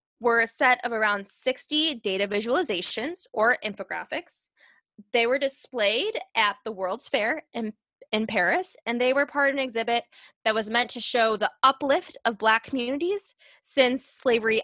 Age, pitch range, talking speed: 20-39, 210-270 Hz, 160 wpm